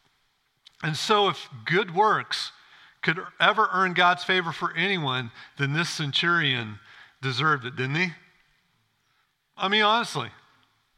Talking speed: 120 wpm